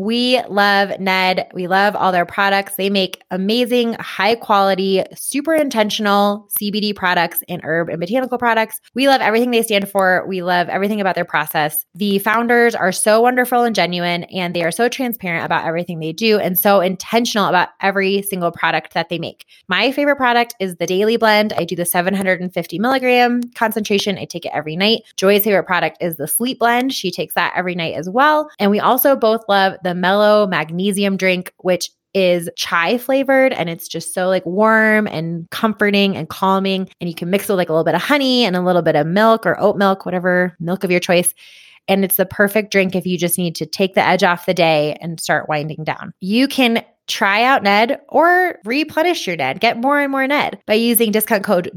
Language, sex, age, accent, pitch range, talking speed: English, female, 20-39, American, 180-230 Hz, 205 wpm